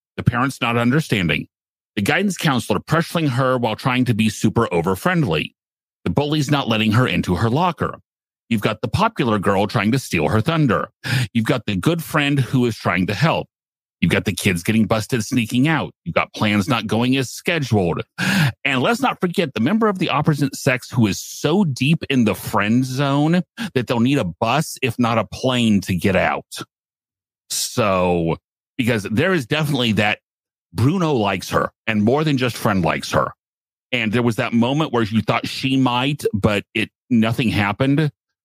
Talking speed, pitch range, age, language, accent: 185 wpm, 105-140 Hz, 40-59, English, American